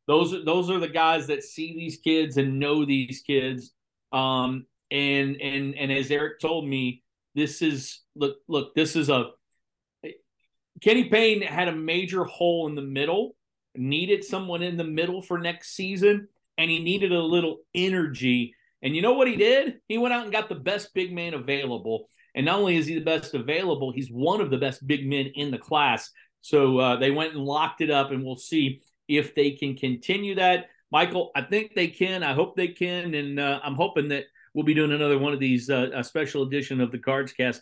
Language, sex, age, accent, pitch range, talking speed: English, male, 40-59, American, 135-170 Hz, 210 wpm